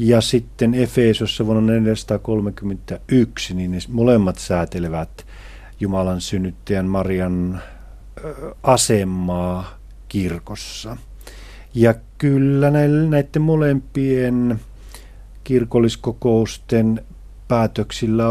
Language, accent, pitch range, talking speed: Finnish, native, 100-120 Hz, 60 wpm